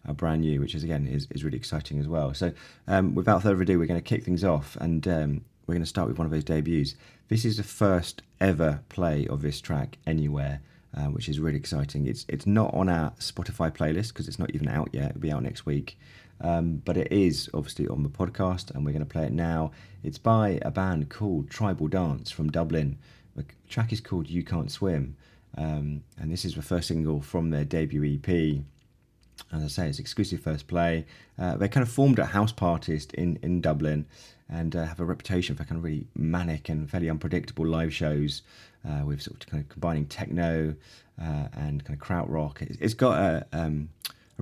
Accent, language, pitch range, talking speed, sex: British, English, 75-90 Hz, 215 wpm, male